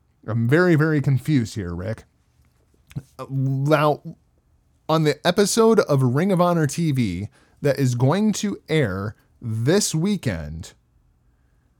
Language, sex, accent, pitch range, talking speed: English, male, American, 110-165 Hz, 110 wpm